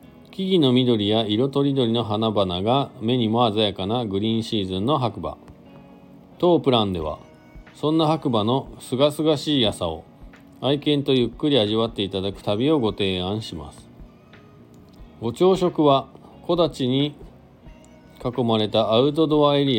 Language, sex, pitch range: Japanese, male, 95-135 Hz